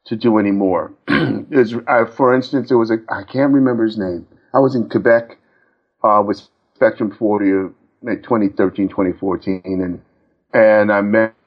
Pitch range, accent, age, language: 105-135 Hz, American, 50-69, English